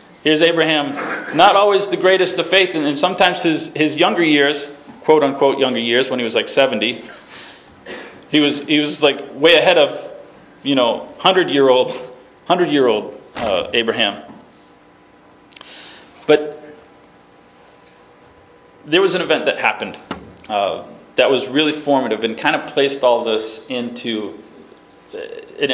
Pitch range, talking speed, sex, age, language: 120-165 Hz, 145 wpm, male, 30-49, English